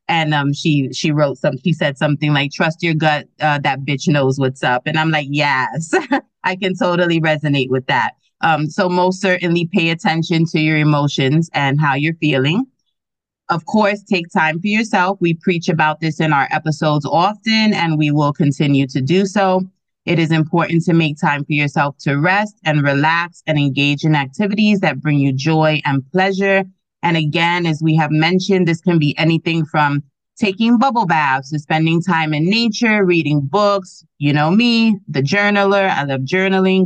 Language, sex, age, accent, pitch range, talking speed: English, female, 30-49, American, 150-185 Hz, 185 wpm